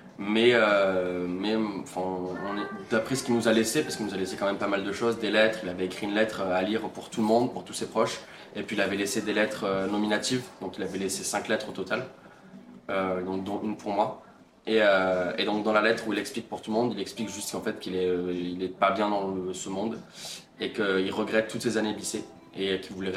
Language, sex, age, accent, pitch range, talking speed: French, male, 20-39, French, 95-105 Hz, 260 wpm